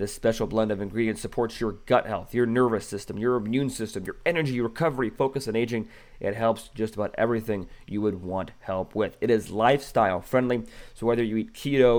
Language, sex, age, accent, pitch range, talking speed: English, male, 30-49, American, 105-125 Hz, 200 wpm